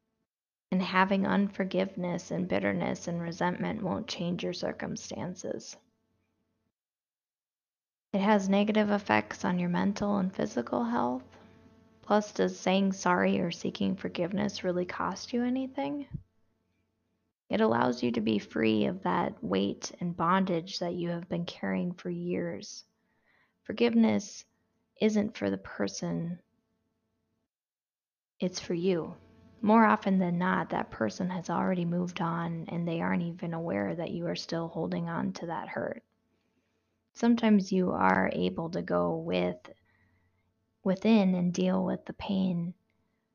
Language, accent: English, American